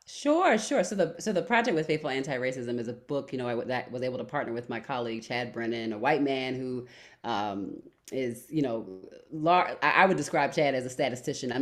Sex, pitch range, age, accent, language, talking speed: female, 130-175 Hz, 30-49, American, English, 240 wpm